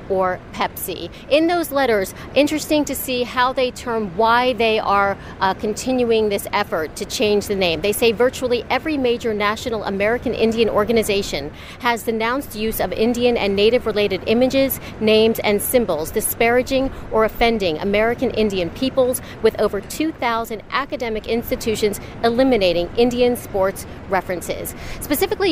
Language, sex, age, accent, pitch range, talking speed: English, female, 40-59, American, 205-245 Hz, 135 wpm